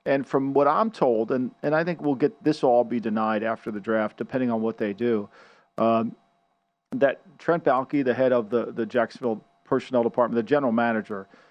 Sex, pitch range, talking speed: male, 120-150 Hz, 200 wpm